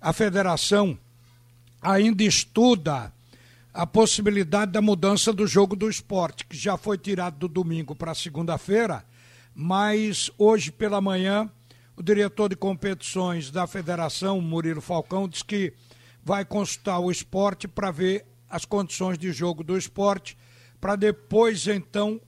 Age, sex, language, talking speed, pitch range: 60-79, male, Portuguese, 130 wpm, 165-210 Hz